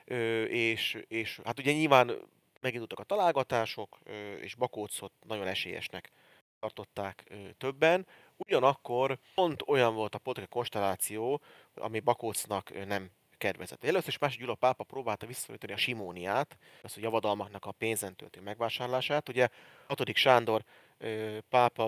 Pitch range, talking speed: 105-125 Hz, 125 wpm